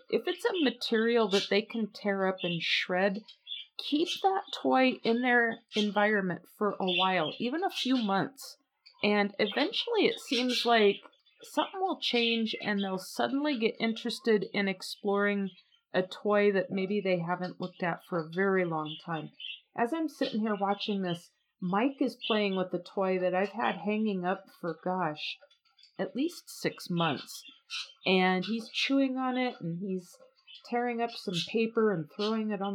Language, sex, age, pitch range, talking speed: English, female, 40-59, 185-240 Hz, 165 wpm